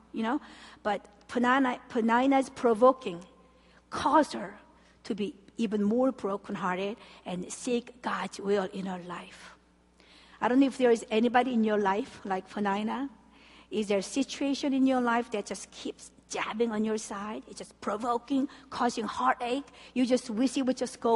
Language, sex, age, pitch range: Korean, female, 50-69, 215-265 Hz